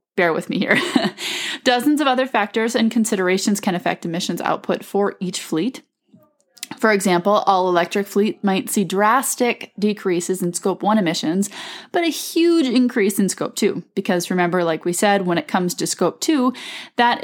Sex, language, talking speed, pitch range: female, English, 170 wpm, 175-240 Hz